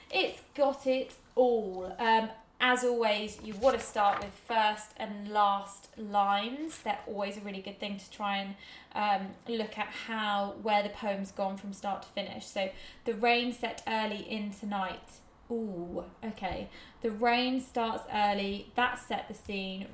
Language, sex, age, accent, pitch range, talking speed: English, female, 20-39, British, 200-250 Hz, 165 wpm